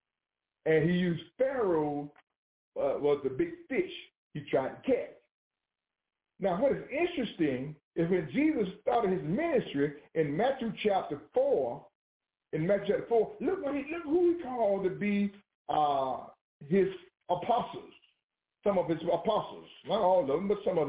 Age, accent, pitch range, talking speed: 50-69, American, 180-285 Hz, 155 wpm